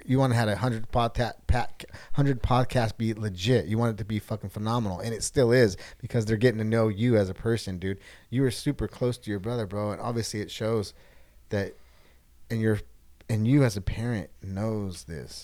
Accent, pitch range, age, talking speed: American, 90-110 Hz, 30-49, 220 wpm